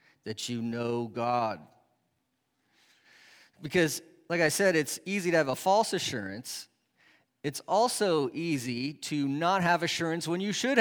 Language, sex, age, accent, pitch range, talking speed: English, male, 40-59, American, 125-180 Hz, 140 wpm